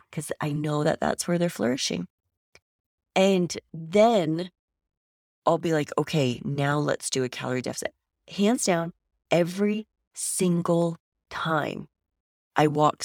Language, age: English, 30-49